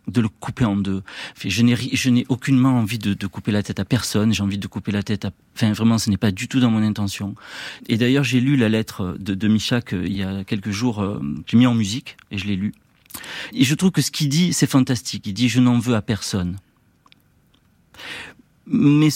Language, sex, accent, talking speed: French, male, French, 235 wpm